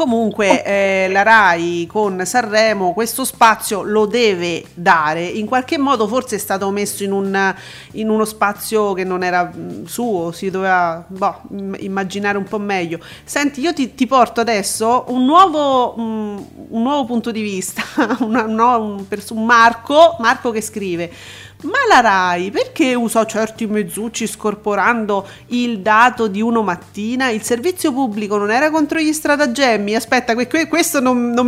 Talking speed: 160 wpm